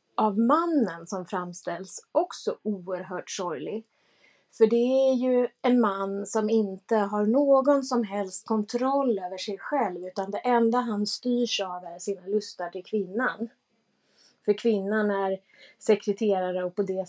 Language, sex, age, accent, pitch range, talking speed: Swedish, female, 30-49, native, 200-250 Hz, 145 wpm